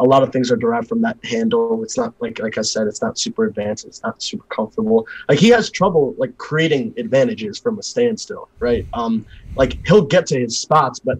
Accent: American